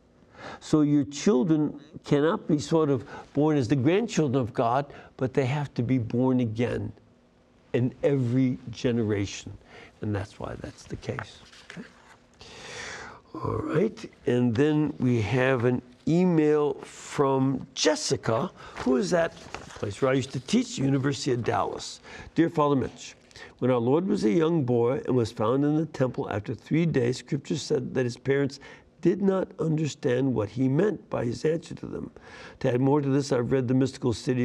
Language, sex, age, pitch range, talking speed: English, male, 60-79, 120-145 Hz, 165 wpm